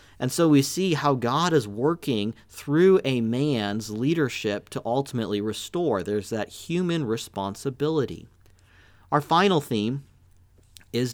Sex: male